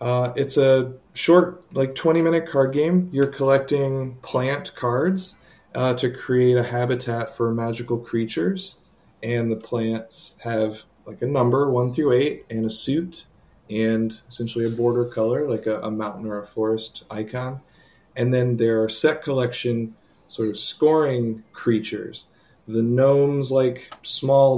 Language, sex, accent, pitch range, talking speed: English, male, American, 110-135 Hz, 145 wpm